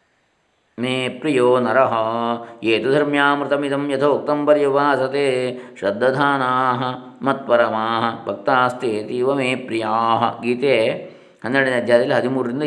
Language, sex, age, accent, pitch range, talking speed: Kannada, male, 20-39, native, 115-140 Hz, 70 wpm